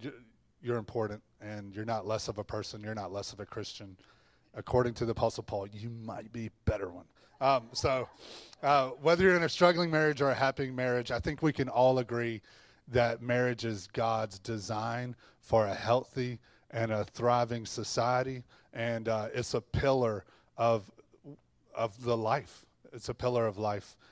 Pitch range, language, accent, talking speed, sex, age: 115-140 Hz, English, American, 175 wpm, male, 30-49